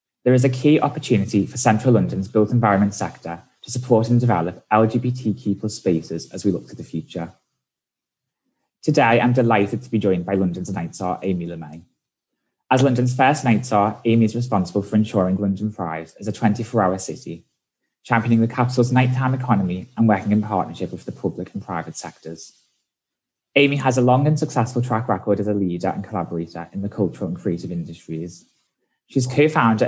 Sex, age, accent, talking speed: male, 20-39, British, 175 wpm